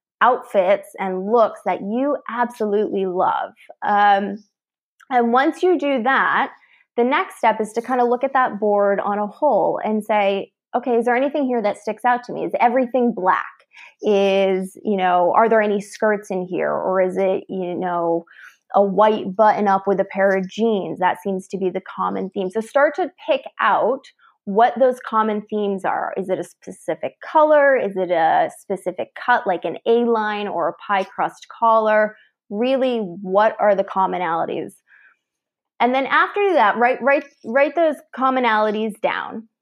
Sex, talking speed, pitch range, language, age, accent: female, 175 wpm, 195-260 Hz, English, 20-39, American